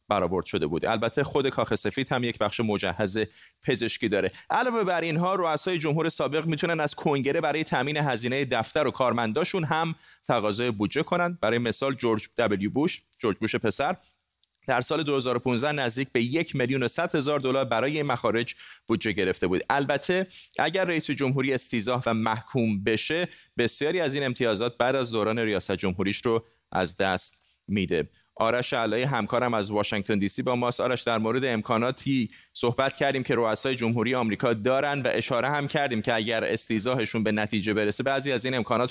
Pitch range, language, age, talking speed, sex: 110-145 Hz, Persian, 30-49, 170 wpm, male